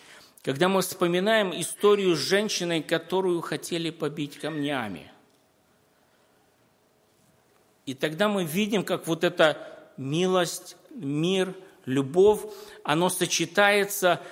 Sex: male